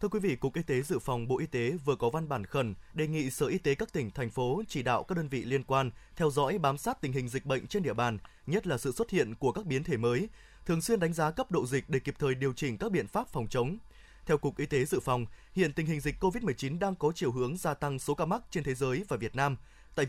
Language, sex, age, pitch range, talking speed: Vietnamese, male, 20-39, 135-185 Hz, 290 wpm